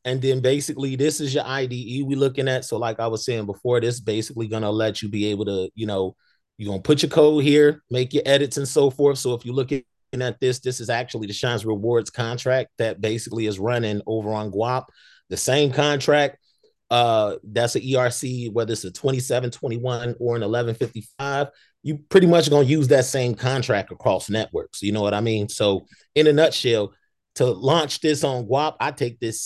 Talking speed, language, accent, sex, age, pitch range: 200 wpm, English, American, male, 30-49, 110-140 Hz